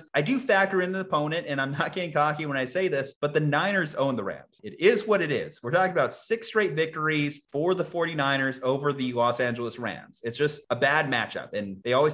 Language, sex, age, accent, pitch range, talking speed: English, male, 30-49, American, 125-155 Hz, 235 wpm